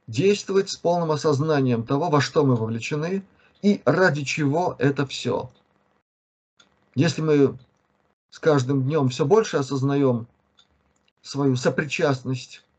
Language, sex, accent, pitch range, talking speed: Russian, male, native, 130-165 Hz, 115 wpm